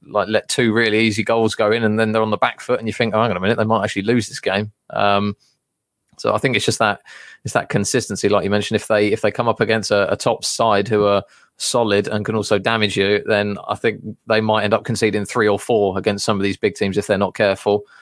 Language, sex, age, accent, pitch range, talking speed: English, male, 20-39, British, 100-115 Hz, 275 wpm